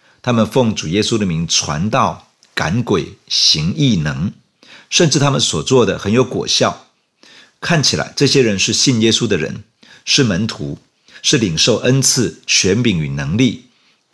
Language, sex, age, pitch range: Chinese, male, 50-69, 105-135 Hz